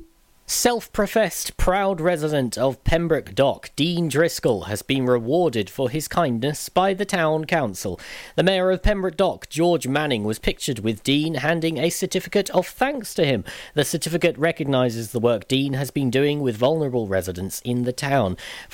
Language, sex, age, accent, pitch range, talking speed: English, male, 40-59, British, 120-170 Hz, 165 wpm